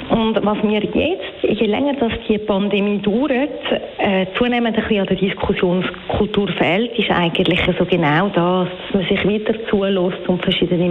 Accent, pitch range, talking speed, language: Austrian, 185-230 Hz, 165 wpm, German